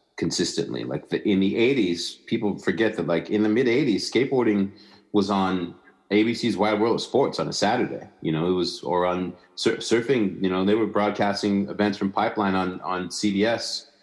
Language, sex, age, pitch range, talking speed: English, male, 30-49, 85-100 Hz, 185 wpm